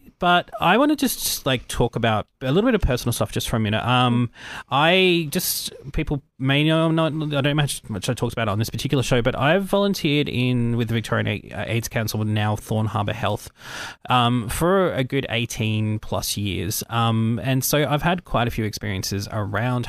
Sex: male